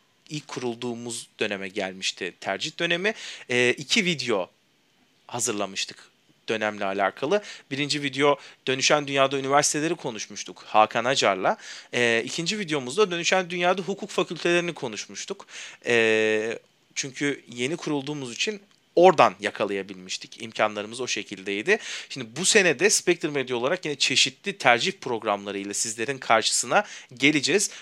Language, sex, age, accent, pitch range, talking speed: Turkish, male, 40-59, native, 115-170 Hz, 110 wpm